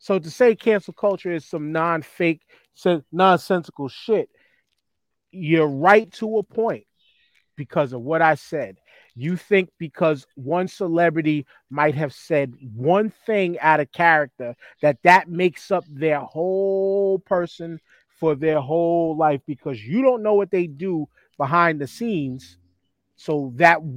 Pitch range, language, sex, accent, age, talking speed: 145-180 Hz, English, male, American, 30-49, 145 wpm